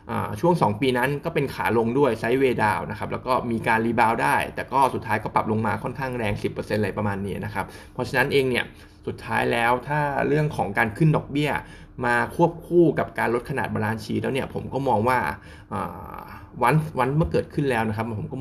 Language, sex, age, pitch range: Thai, male, 20-39, 110-135 Hz